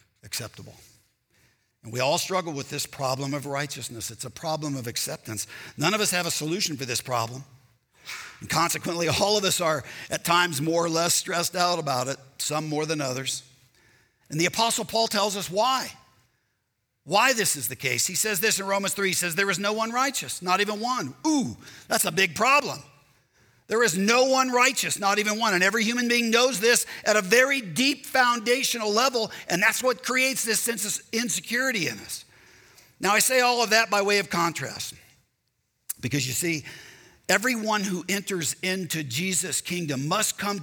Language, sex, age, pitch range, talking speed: English, male, 50-69, 135-215 Hz, 190 wpm